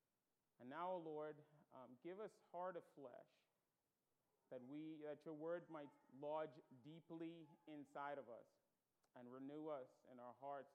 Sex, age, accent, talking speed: male, 40-59, American, 145 wpm